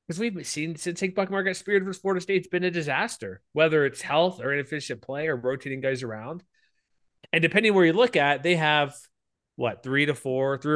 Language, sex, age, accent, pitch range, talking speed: English, male, 20-39, American, 125-160 Hz, 210 wpm